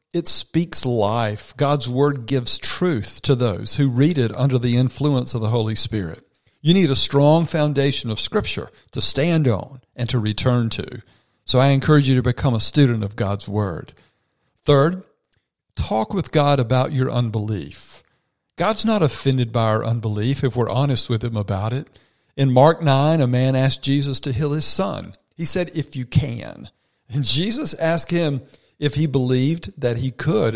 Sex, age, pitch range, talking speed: male, 50-69, 115-150 Hz, 175 wpm